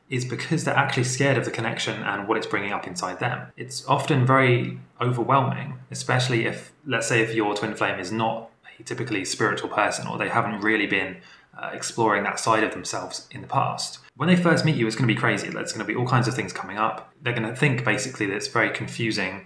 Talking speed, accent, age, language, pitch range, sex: 235 wpm, British, 20-39, English, 105-130 Hz, male